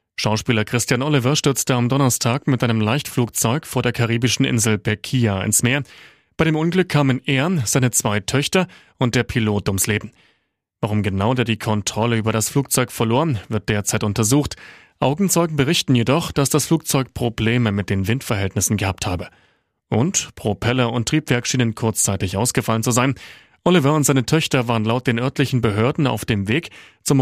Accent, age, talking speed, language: German, 30-49, 165 wpm, German